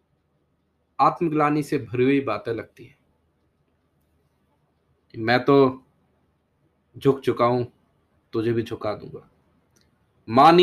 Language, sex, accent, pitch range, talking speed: Hindi, male, native, 125-160 Hz, 90 wpm